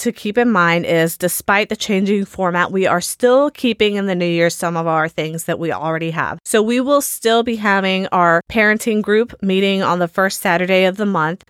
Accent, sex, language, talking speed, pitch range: American, female, English, 220 wpm, 180-220 Hz